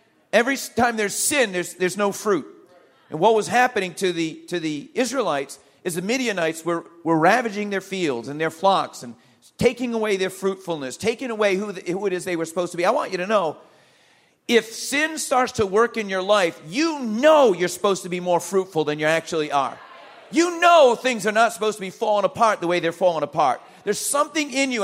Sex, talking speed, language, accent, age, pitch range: male, 215 wpm, English, American, 40-59, 165-210 Hz